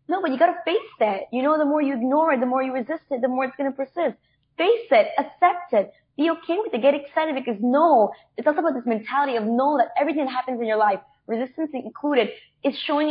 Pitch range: 225-305 Hz